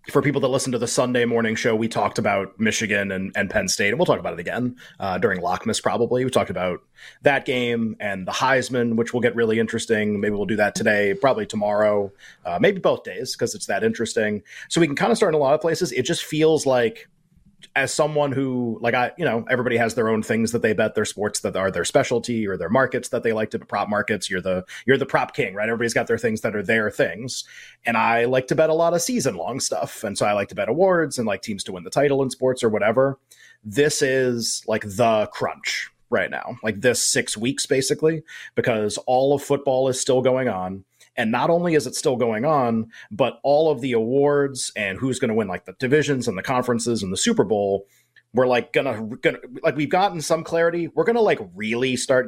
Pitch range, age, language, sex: 110-140 Hz, 30-49, English, male